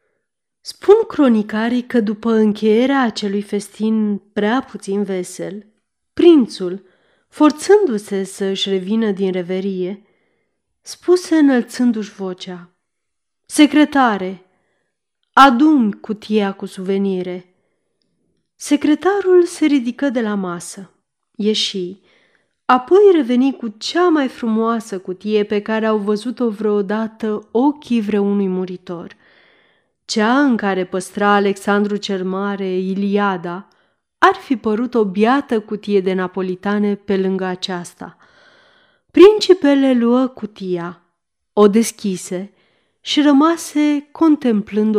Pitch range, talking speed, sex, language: 195-260 Hz, 100 wpm, female, Romanian